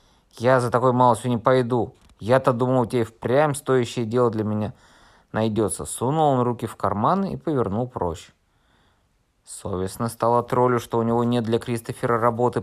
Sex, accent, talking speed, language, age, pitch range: male, native, 155 wpm, Russian, 20-39, 100-130 Hz